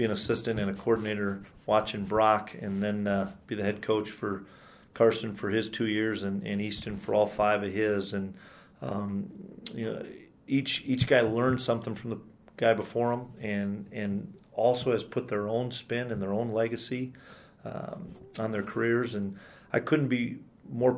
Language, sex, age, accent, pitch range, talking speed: English, male, 40-59, American, 105-120 Hz, 185 wpm